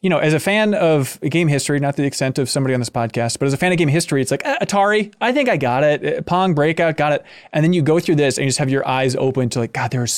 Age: 20-39